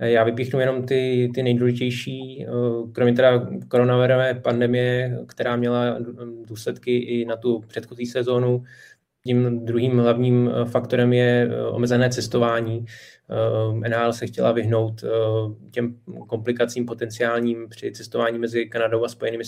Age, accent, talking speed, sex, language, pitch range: 20-39, native, 115 wpm, male, Czech, 115-125 Hz